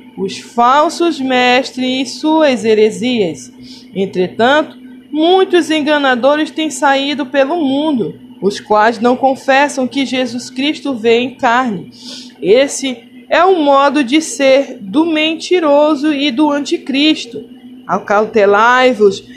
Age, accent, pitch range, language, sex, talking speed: 20-39, Brazilian, 230-300 Hz, Portuguese, female, 110 wpm